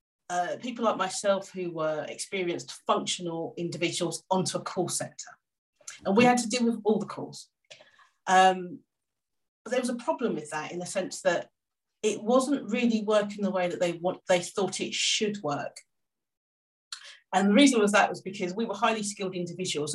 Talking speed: 180 wpm